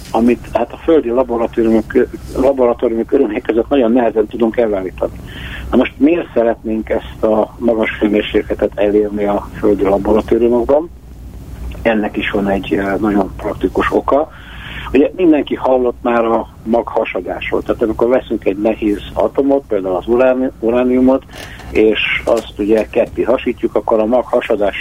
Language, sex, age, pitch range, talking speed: Hungarian, male, 60-79, 105-120 Hz, 125 wpm